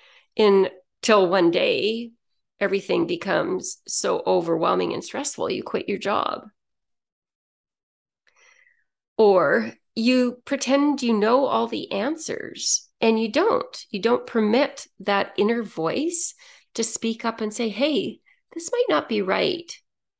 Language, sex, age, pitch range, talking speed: English, female, 40-59, 185-260 Hz, 120 wpm